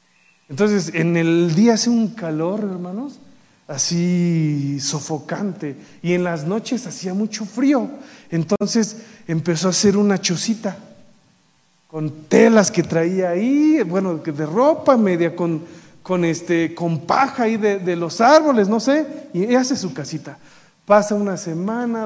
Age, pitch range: 40-59, 170-235 Hz